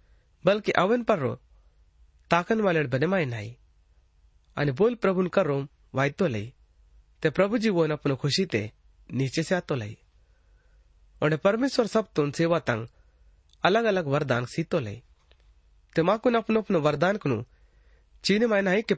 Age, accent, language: 30-49, native, Hindi